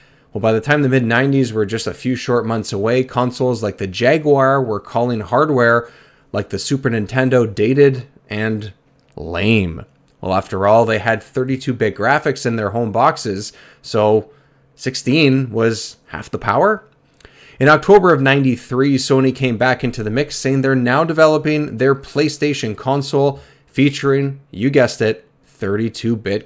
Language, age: English, 20-39